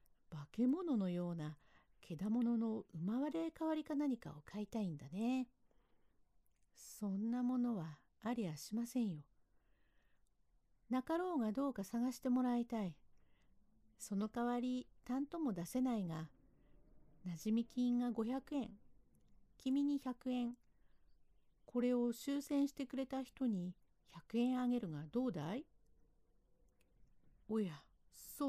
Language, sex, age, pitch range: Japanese, female, 50-69, 170-255 Hz